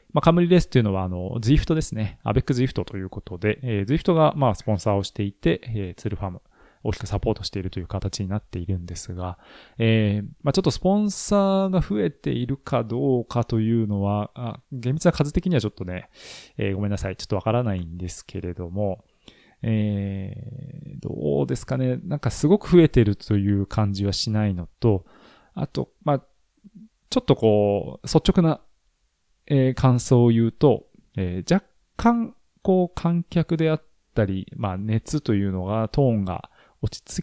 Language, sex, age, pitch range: Japanese, male, 20-39, 95-140 Hz